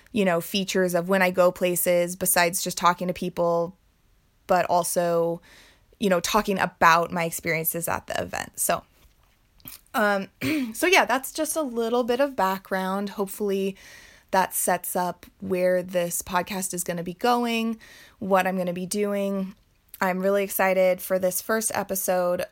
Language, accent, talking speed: English, American, 160 wpm